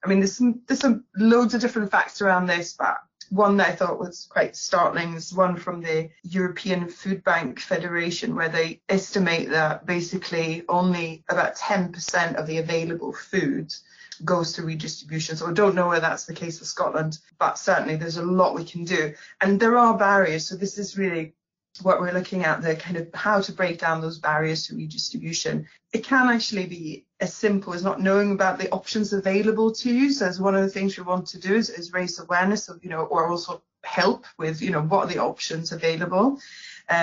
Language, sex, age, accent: English, female, 20-39, British